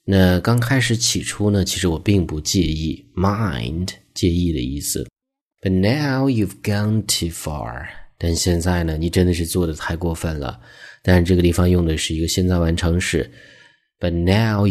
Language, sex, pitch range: Chinese, male, 85-105 Hz